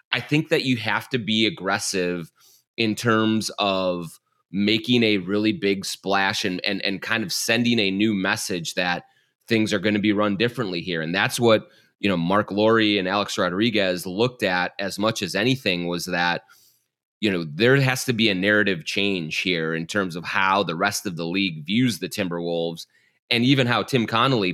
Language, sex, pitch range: English, male, 95-120 Hz